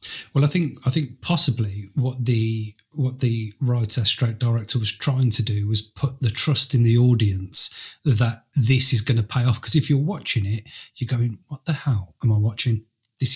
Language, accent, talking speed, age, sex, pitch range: English, British, 200 wpm, 30-49, male, 110-130 Hz